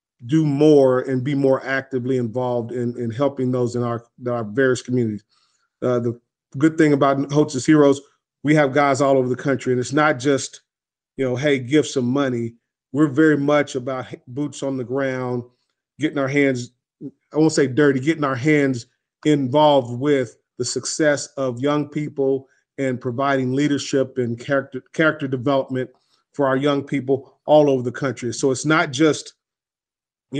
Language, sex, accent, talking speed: English, male, American, 170 wpm